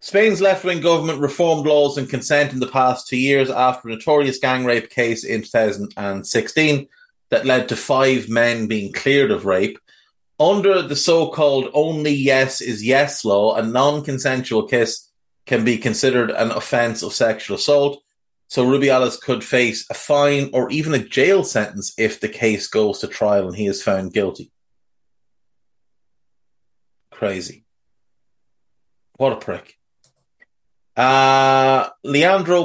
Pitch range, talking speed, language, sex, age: 115-145 Hz, 140 wpm, English, male, 30-49